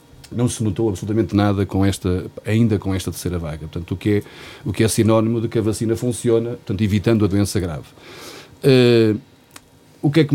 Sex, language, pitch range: male, Portuguese, 105-130 Hz